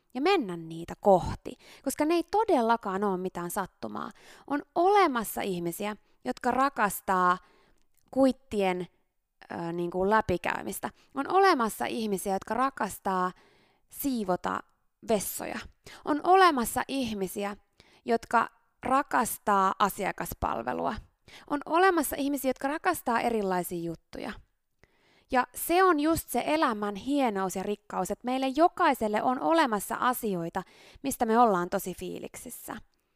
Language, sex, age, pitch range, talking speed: Finnish, female, 20-39, 190-280 Hz, 110 wpm